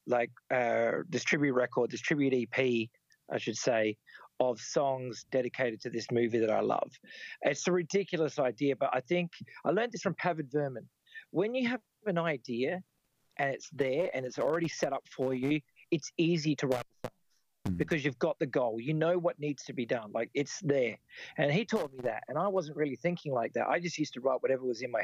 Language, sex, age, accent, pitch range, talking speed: English, male, 40-59, Australian, 125-165 Hz, 215 wpm